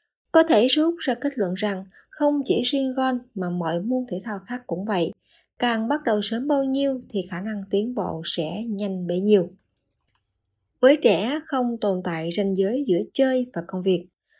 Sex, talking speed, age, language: female, 190 wpm, 20-39, Vietnamese